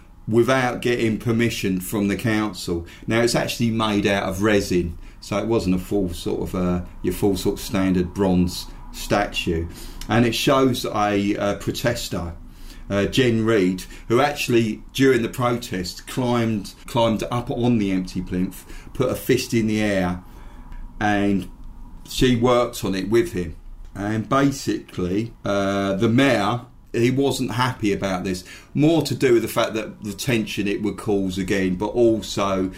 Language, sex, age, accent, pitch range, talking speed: English, male, 40-59, British, 95-115 Hz, 160 wpm